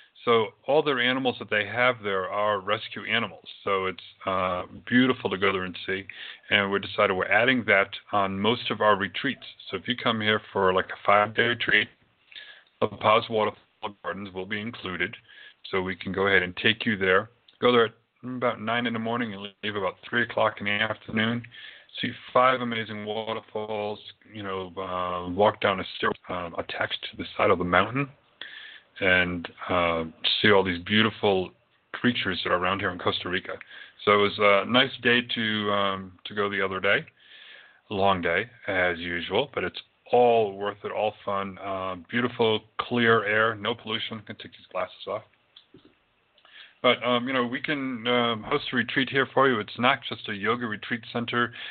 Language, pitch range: English, 100-120 Hz